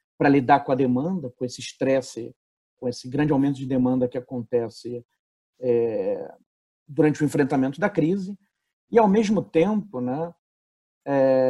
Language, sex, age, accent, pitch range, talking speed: Portuguese, male, 40-59, Brazilian, 125-160 Hz, 145 wpm